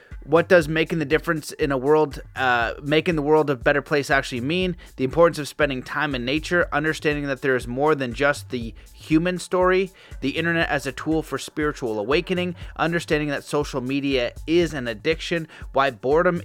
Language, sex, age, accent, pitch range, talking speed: English, male, 30-49, American, 135-165 Hz, 185 wpm